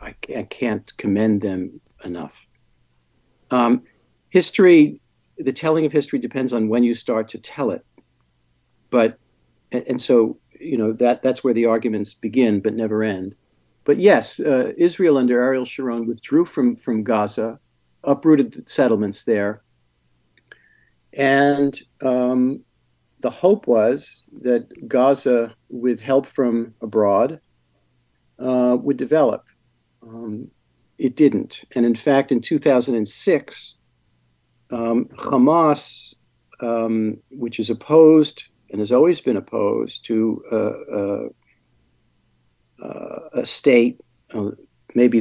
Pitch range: 105-135 Hz